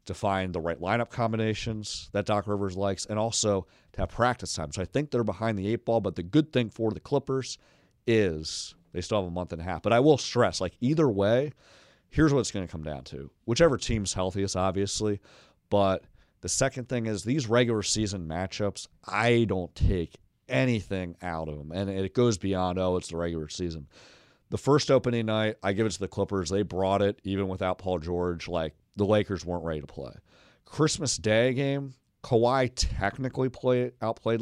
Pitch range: 90-115 Hz